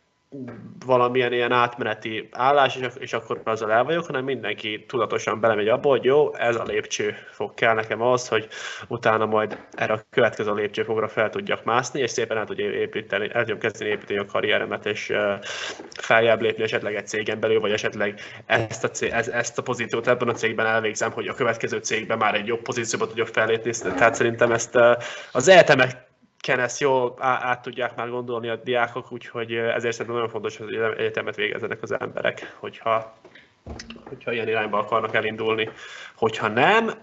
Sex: male